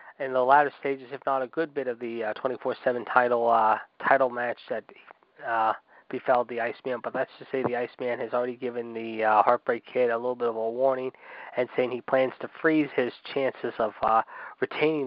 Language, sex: English, male